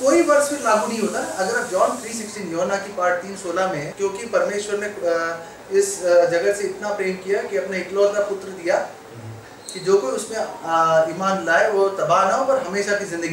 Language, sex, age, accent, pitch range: Hindi, male, 30-49, native, 185-255 Hz